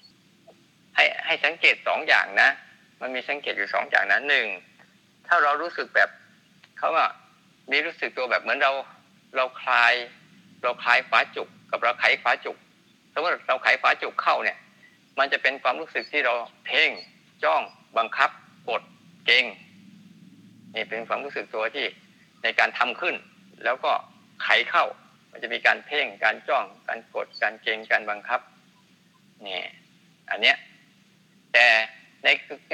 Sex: male